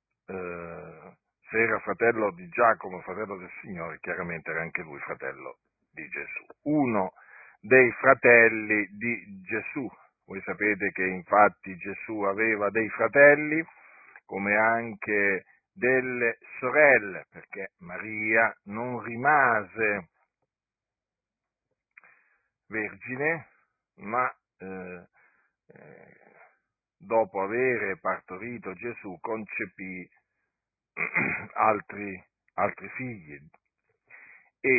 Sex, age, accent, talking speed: male, 50-69, native, 85 wpm